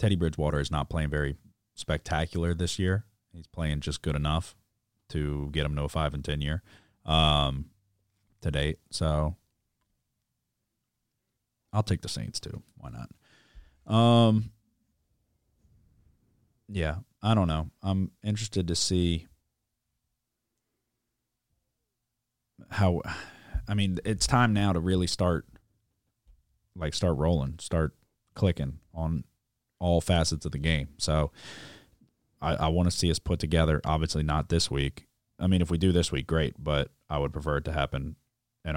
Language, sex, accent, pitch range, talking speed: English, male, American, 75-95 Hz, 145 wpm